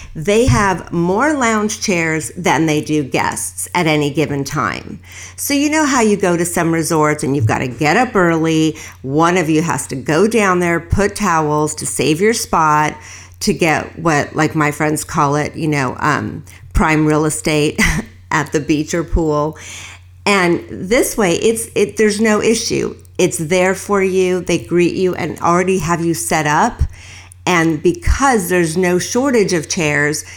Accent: American